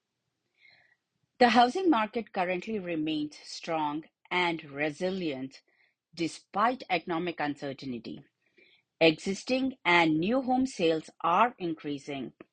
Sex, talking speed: female, 85 wpm